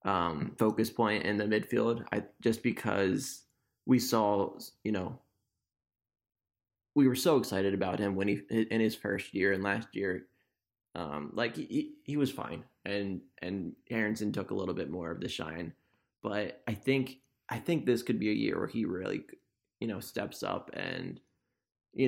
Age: 20-39